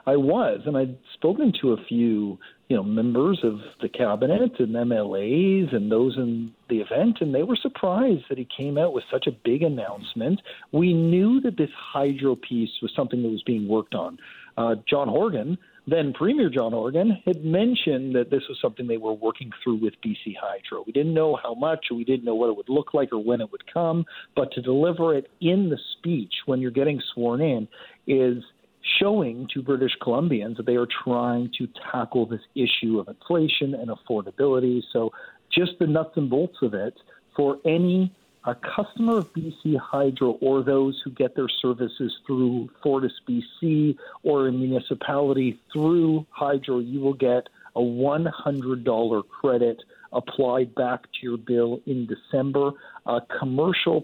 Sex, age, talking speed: male, 50-69, 175 wpm